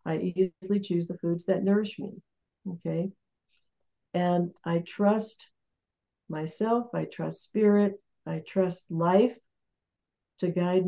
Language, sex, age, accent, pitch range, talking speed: English, female, 60-79, American, 170-195 Hz, 115 wpm